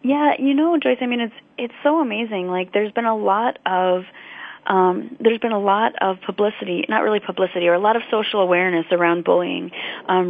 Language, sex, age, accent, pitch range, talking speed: English, female, 30-49, American, 180-210 Hz, 205 wpm